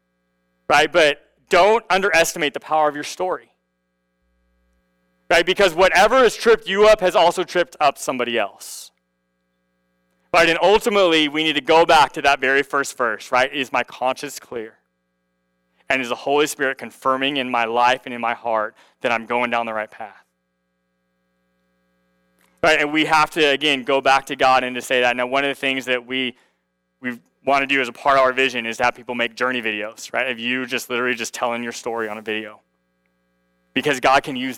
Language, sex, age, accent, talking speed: English, male, 20-39, American, 195 wpm